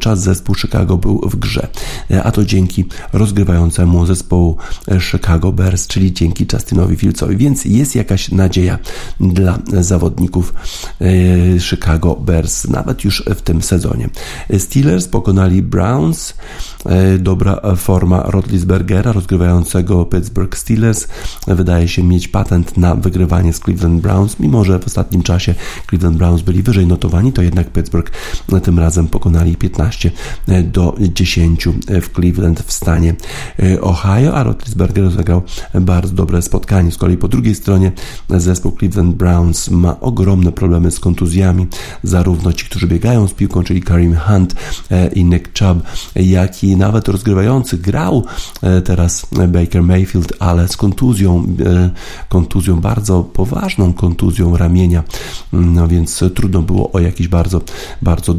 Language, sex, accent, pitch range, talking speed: Polish, male, native, 85-95 Hz, 130 wpm